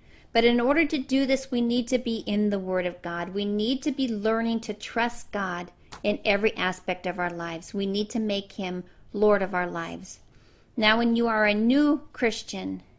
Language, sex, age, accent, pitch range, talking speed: English, female, 40-59, American, 195-240 Hz, 210 wpm